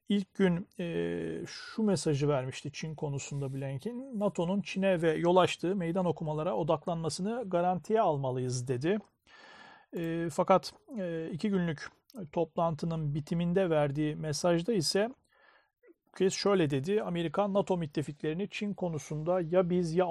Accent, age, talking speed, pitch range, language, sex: native, 40-59, 115 wpm, 155-195 Hz, Turkish, male